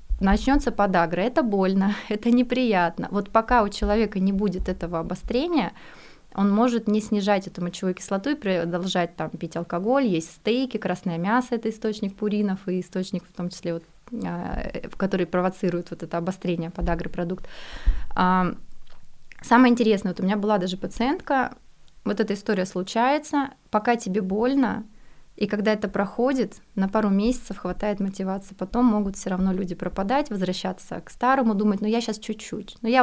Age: 20-39